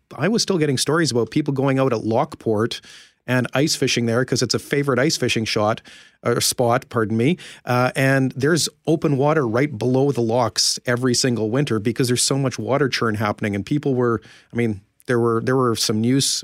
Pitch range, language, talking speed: 115-135 Hz, English, 205 wpm